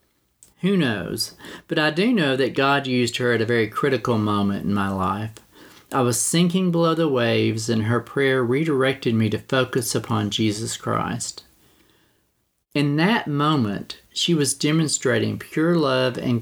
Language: English